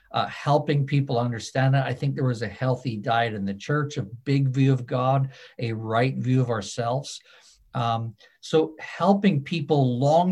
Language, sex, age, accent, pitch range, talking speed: English, male, 50-69, American, 115-140 Hz, 175 wpm